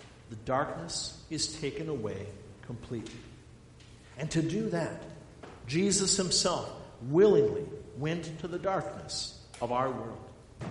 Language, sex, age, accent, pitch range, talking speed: English, male, 50-69, American, 115-170 Hz, 110 wpm